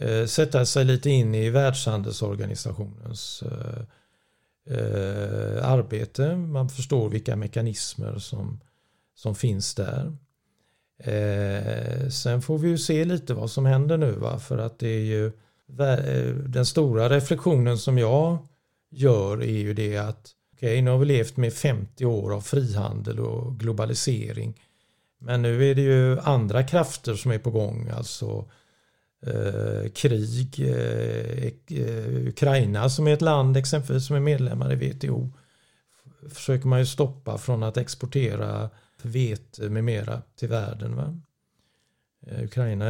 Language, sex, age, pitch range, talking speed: Swedish, male, 50-69, 110-135 Hz, 130 wpm